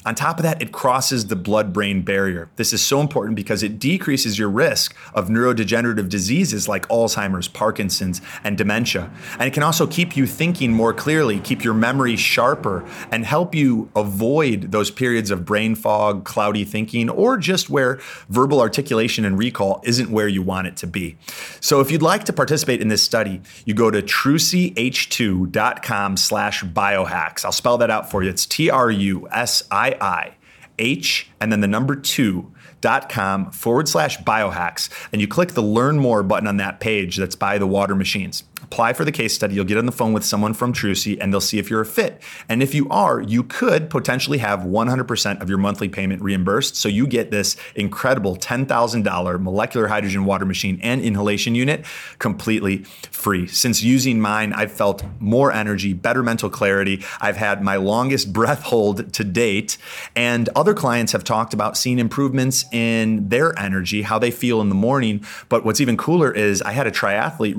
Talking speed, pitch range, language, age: 185 wpm, 100-125 Hz, English, 30-49